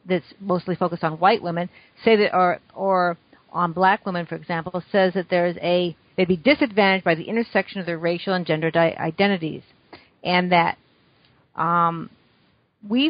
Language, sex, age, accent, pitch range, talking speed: English, female, 50-69, American, 175-210 Hz, 165 wpm